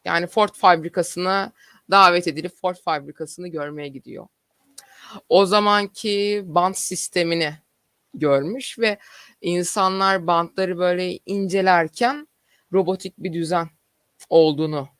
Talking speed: 90 wpm